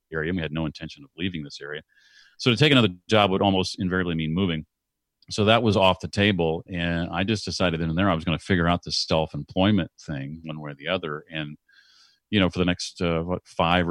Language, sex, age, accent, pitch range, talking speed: English, male, 40-59, American, 85-105 Hz, 235 wpm